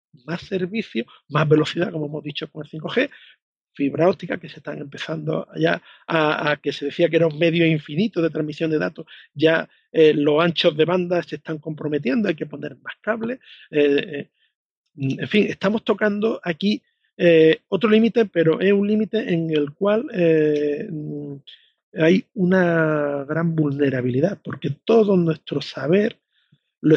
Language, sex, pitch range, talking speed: Spanish, male, 155-195 Hz, 155 wpm